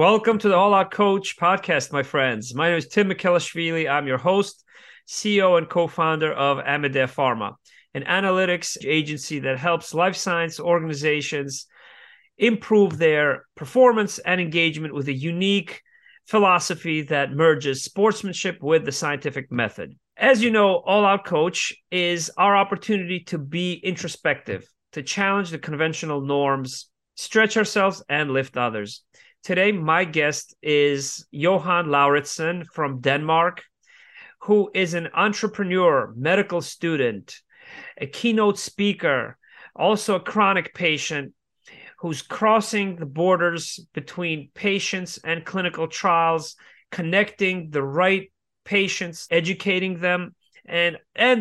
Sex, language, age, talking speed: male, English, 30-49, 125 wpm